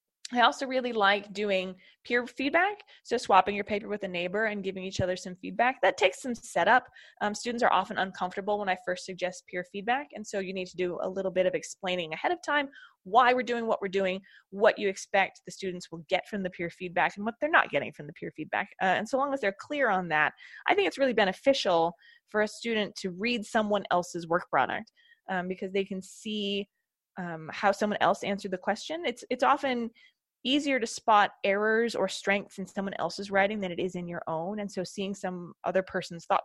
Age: 20-39